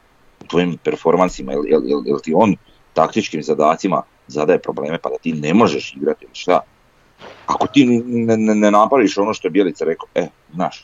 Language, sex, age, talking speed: Croatian, male, 40-59, 175 wpm